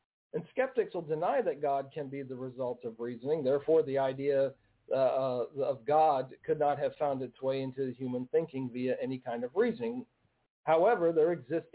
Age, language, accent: 50-69, English, American